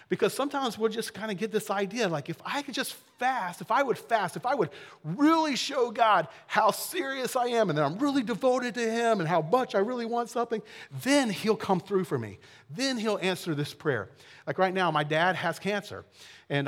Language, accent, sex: English, American, male